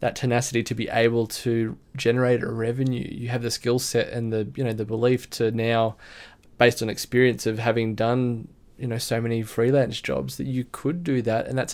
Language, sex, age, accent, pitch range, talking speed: English, male, 20-39, Australian, 115-130 Hz, 210 wpm